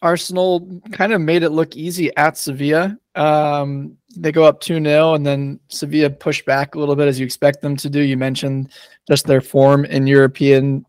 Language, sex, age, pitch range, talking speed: English, male, 20-39, 135-155 Hz, 195 wpm